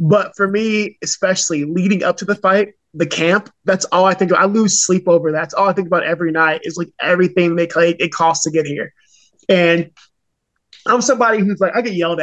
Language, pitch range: English, 170-200 Hz